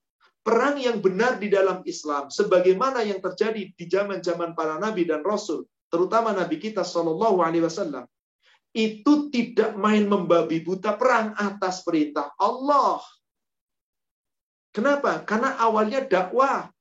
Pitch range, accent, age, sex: 185-240 Hz, native, 40-59, male